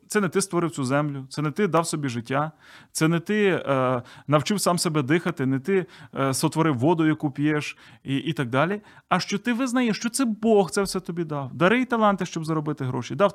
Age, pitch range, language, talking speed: 30-49, 130-200 Hz, Ukrainian, 220 wpm